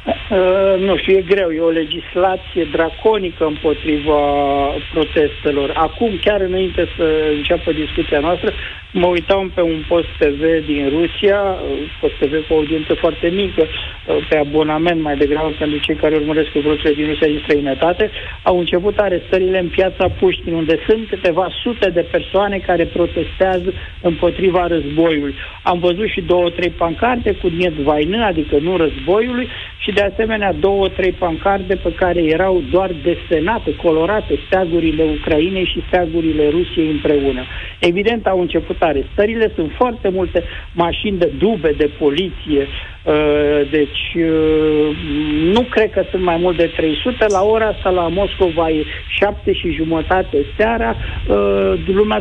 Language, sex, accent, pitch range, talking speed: Romanian, male, native, 155-190 Hz, 145 wpm